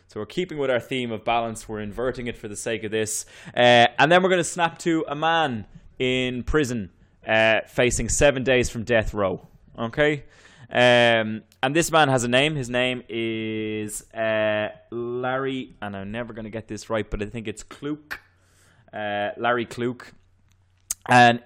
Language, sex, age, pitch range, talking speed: English, male, 20-39, 105-125 Hz, 180 wpm